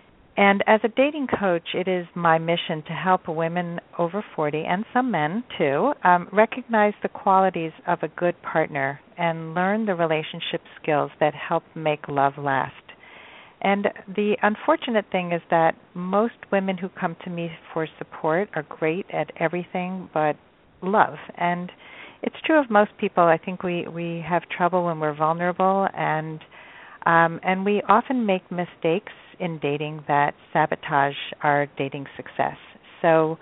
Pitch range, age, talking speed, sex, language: 160-195 Hz, 50-69, 155 wpm, female, English